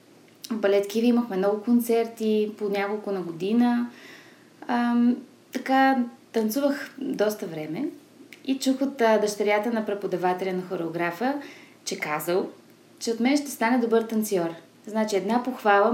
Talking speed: 130 wpm